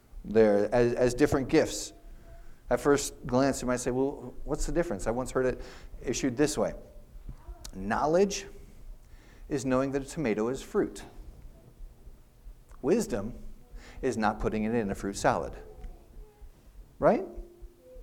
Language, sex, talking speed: English, male, 135 wpm